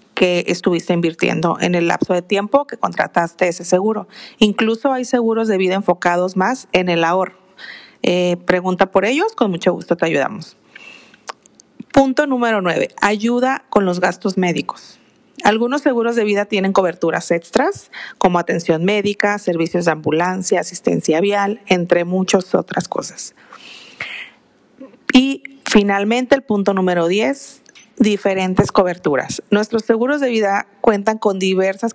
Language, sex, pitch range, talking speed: Spanish, female, 185-230 Hz, 135 wpm